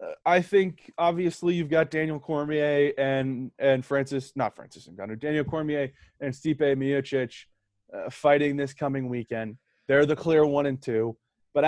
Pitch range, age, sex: 135-165 Hz, 20-39, male